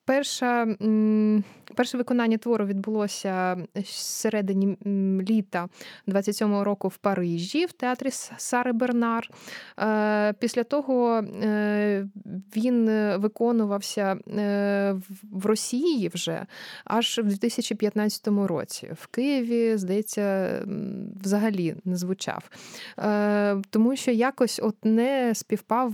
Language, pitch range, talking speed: Ukrainian, 190-230 Hz, 90 wpm